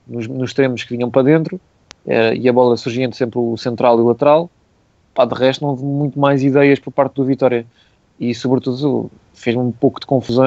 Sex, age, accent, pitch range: male, 20-39, Portuguese, 115-135 Hz